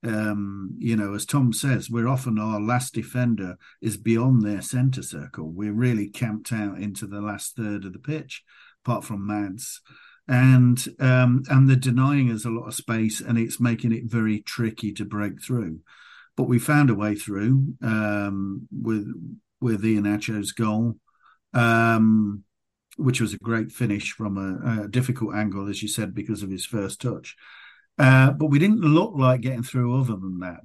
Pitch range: 105-125 Hz